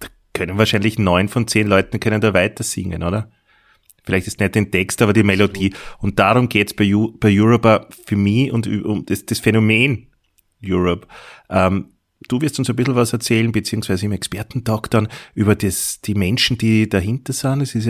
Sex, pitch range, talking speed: male, 100-120 Hz, 185 wpm